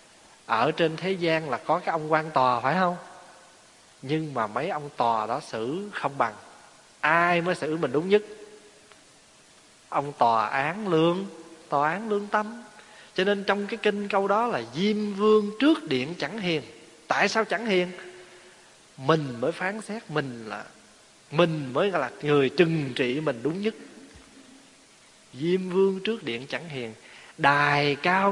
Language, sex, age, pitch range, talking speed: Vietnamese, male, 20-39, 150-215 Hz, 160 wpm